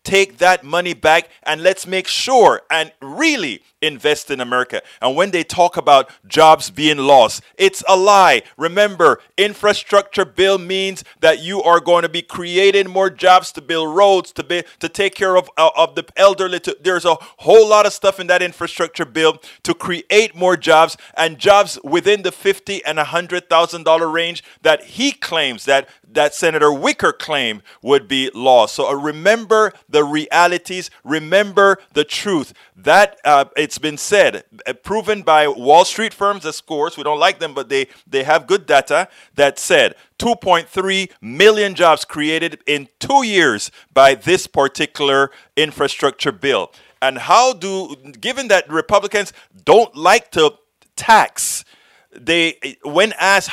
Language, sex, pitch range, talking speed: English, male, 155-200 Hz, 160 wpm